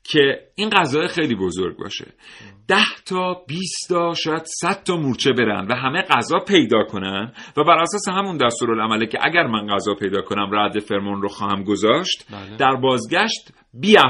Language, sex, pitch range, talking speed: Persian, male, 110-165 Hz, 165 wpm